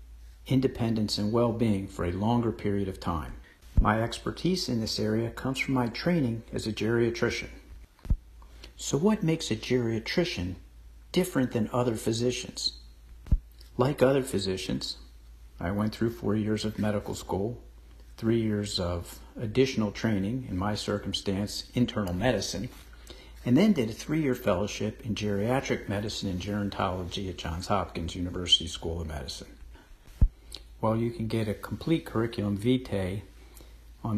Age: 50-69